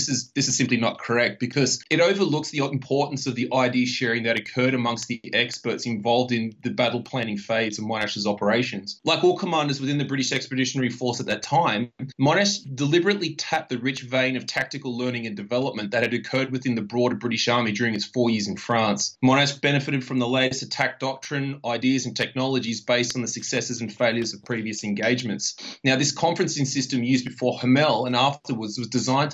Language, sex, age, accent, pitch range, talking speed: English, male, 20-39, Australian, 115-135 Hz, 195 wpm